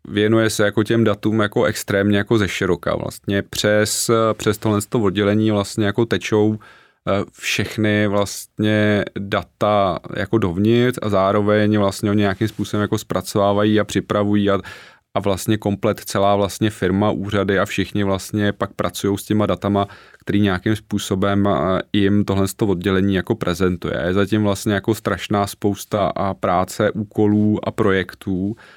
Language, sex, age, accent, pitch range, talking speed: Czech, male, 30-49, native, 100-105 Hz, 135 wpm